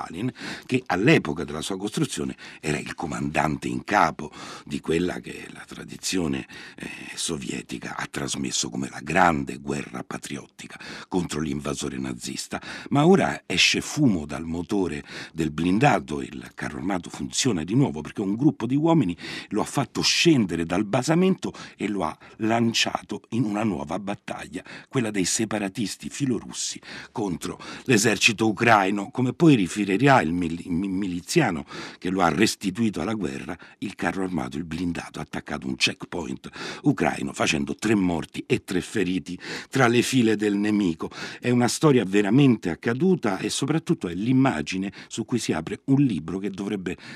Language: Italian